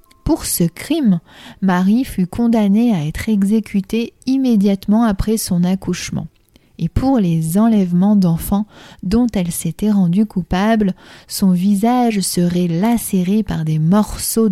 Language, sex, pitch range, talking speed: French, female, 175-215 Hz, 125 wpm